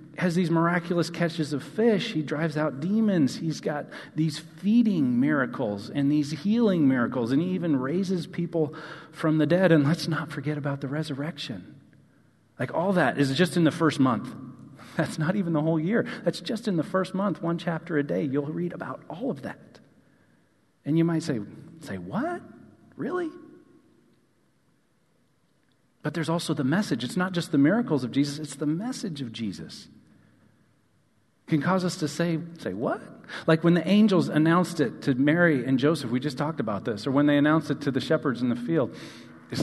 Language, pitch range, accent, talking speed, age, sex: English, 150-225 Hz, American, 185 wpm, 40-59, male